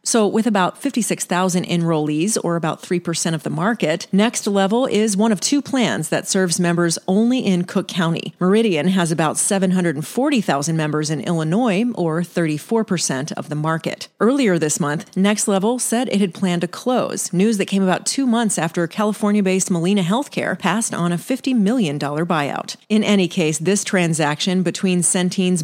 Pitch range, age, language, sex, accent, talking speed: 170-210 Hz, 30-49, English, female, American, 165 wpm